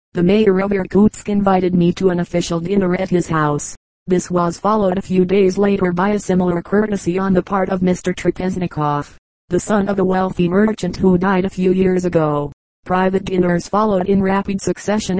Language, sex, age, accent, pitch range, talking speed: English, female, 40-59, American, 175-195 Hz, 190 wpm